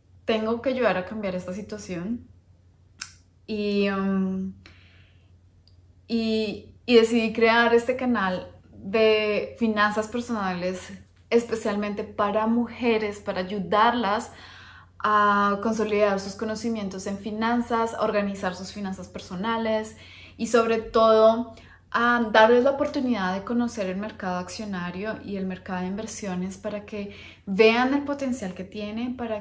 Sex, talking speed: female, 120 wpm